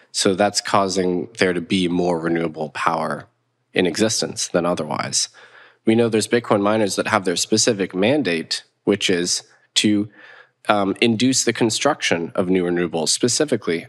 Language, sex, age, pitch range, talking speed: English, male, 20-39, 90-110 Hz, 145 wpm